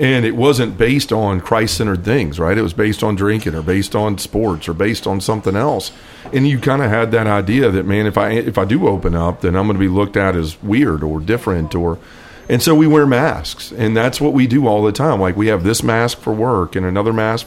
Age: 40-59